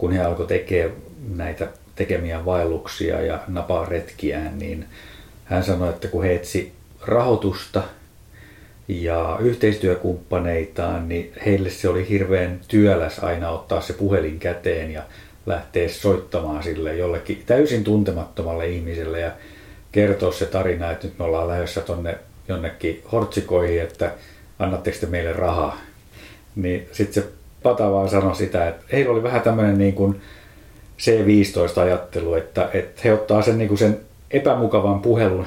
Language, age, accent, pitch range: Finnish, 50-69, native, 85-105 Hz